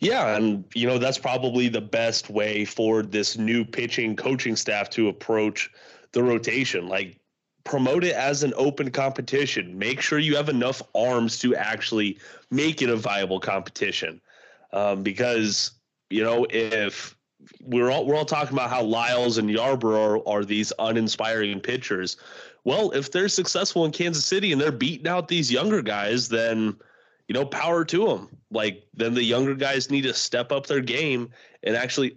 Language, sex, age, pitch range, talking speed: English, male, 30-49, 110-140 Hz, 170 wpm